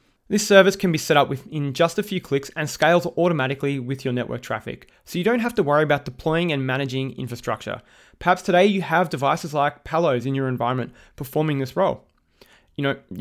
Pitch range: 135-170 Hz